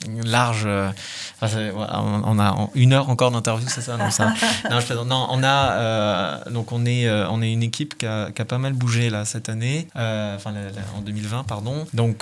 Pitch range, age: 105-120 Hz, 20-39